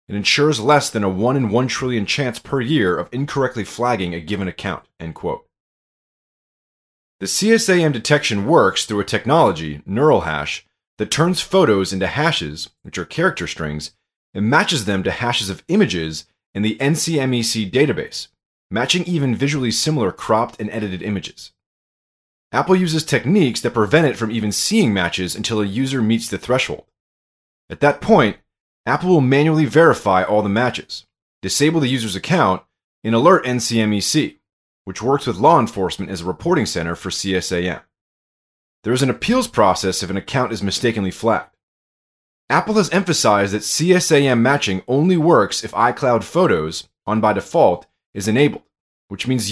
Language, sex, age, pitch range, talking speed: English, male, 30-49, 95-140 Hz, 160 wpm